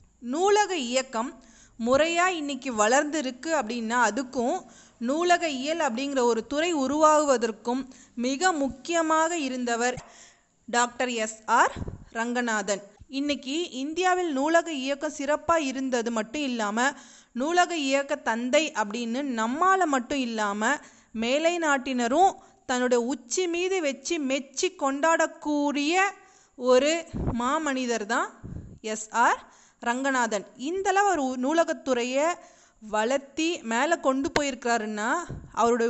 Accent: native